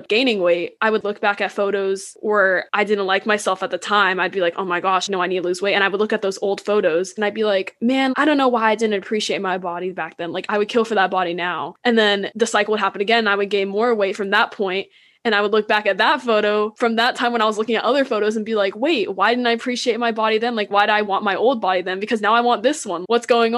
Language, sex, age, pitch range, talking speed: English, female, 20-39, 195-235 Hz, 310 wpm